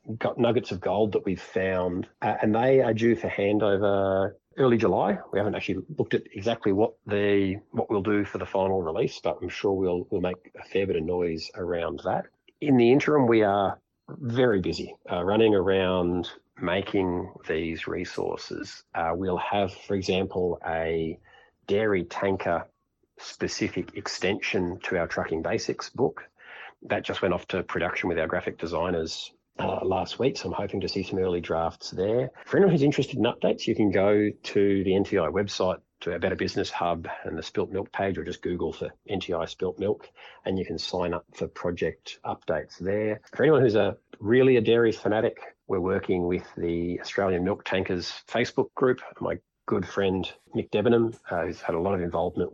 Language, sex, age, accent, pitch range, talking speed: English, male, 40-59, Australian, 90-110 Hz, 185 wpm